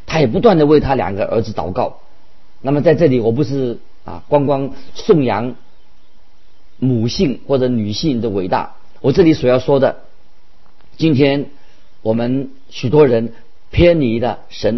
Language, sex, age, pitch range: Chinese, male, 50-69, 120-145 Hz